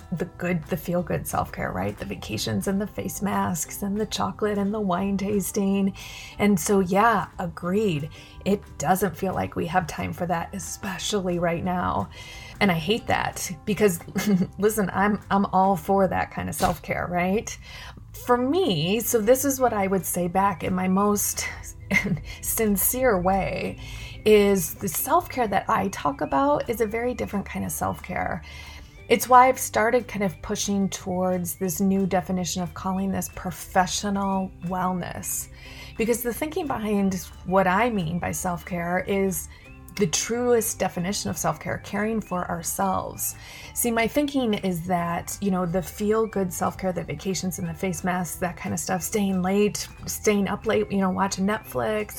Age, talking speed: 30-49, 165 wpm